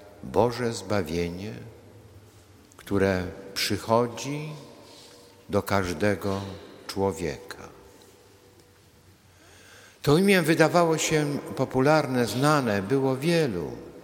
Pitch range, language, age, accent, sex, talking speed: 95-120 Hz, Polish, 50-69, native, male, 65 wpm